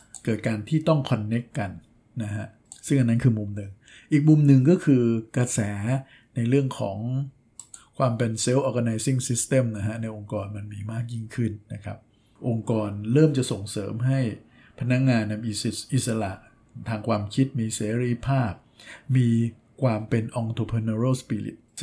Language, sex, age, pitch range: Thai, male, 60-79, 110-130 Hz